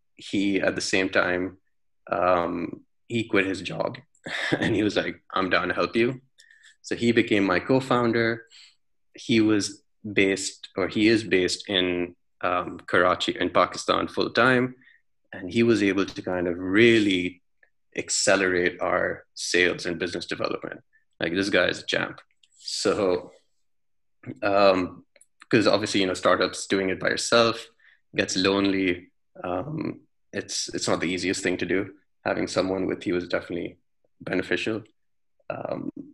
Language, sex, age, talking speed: English, male, 20-39, 145 wpm